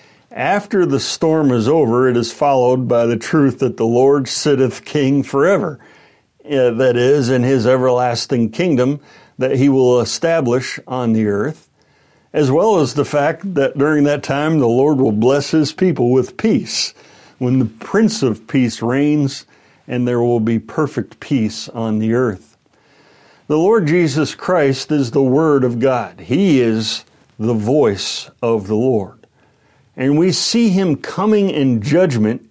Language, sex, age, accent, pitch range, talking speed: English, male, 60-79, American, 120-155 Hz, 155 wpm